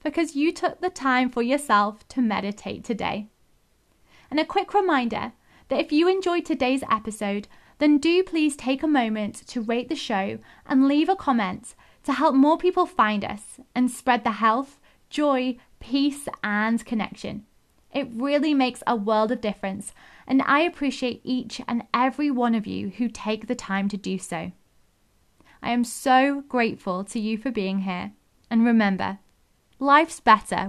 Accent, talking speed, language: British, 165 wpm, English